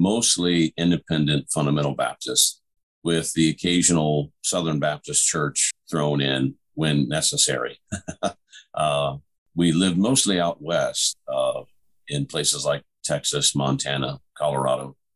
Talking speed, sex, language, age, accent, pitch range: 105 wpm, male, English, 50-69, American, 70-85 Hz